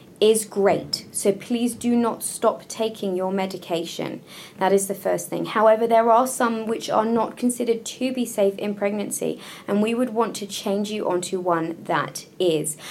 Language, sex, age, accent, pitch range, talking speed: English, female, 20-39, British, 170-225 Hz, 180 wpm